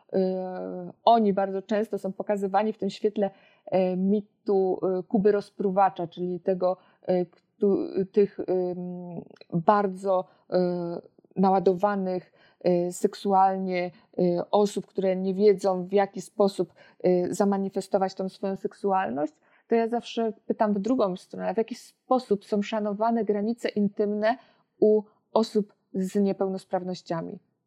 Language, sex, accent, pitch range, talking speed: Polish, female, native, 195-220 Hz, 100 wpm